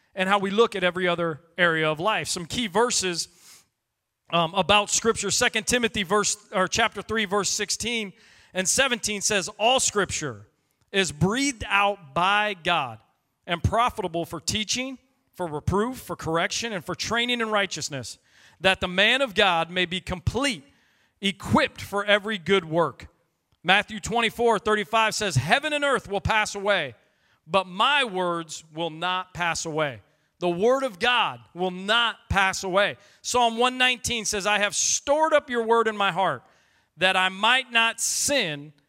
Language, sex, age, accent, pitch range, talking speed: English, male, 40-59, American, 180-230 Hz, 155 wpm